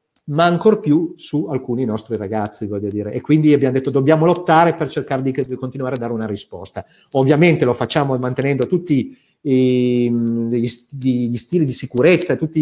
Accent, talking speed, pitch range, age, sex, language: native, 155 wpm, 125-155 Hz, 40-59, male, Italian